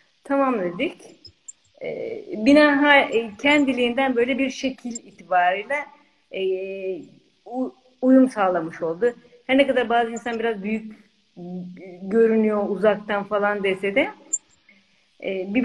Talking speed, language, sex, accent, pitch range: 90 wpm, Turkish, female, native, 205-270 Hz